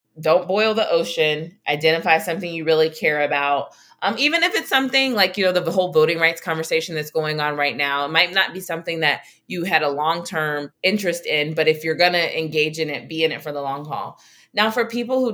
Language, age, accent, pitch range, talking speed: English, 20-39, American, 155-200 Hz, 230 wpm